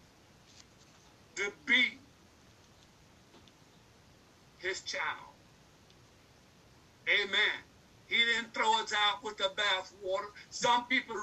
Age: 60-79